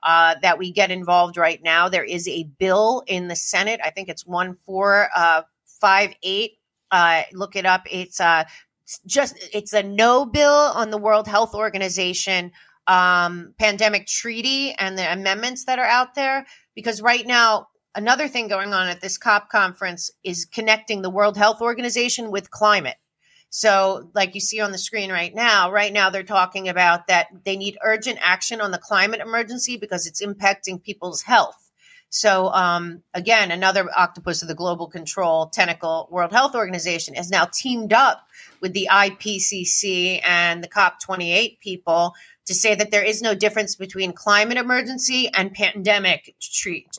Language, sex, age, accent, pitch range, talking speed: English, female, 30-49, American, 180-220 Hz, 170 wpm